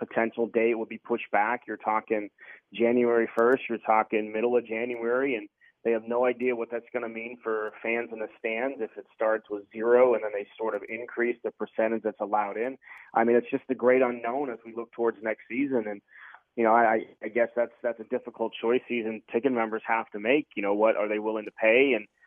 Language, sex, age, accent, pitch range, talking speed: English, male, 30-49, American, 110-120 Hz, 230 wpm